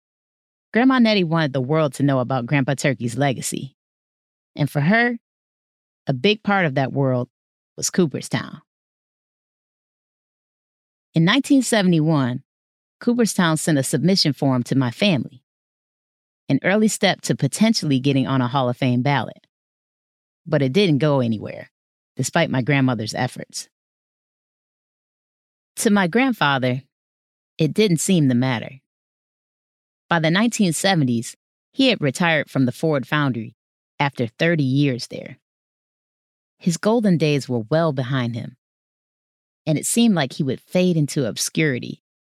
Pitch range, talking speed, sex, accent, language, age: 130-185 Hz, 130 wpm, female, American, English, 30-49